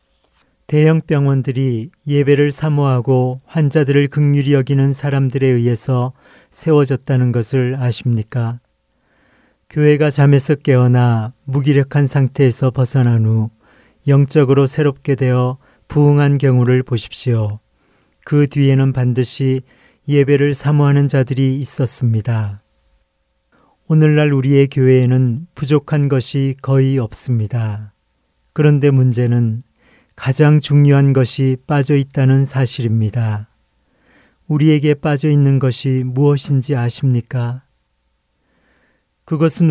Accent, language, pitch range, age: native, Korean, 120-145 Hz, 40-59